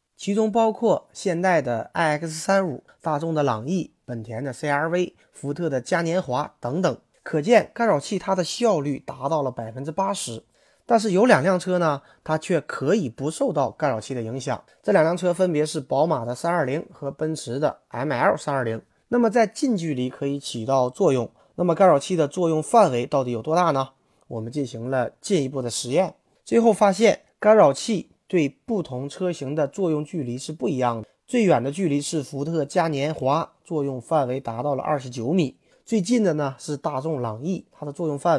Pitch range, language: 135-185 Hz, Chinese